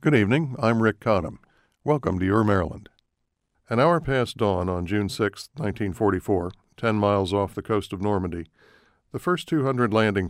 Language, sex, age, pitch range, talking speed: English, male, 60-79, 100-115 Hz, 165 wpm